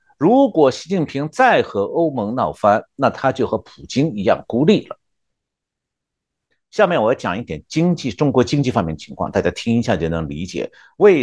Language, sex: Chinese, male